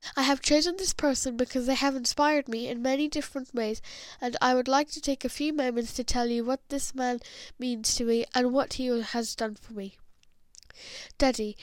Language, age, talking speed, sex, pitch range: English, 10-29, 205 wpm, female, 240-280 Hz